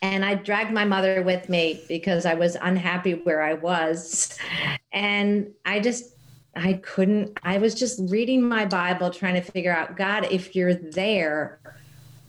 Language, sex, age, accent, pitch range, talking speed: English, female, 40-59, American, 165-205 Hz, 160 wpm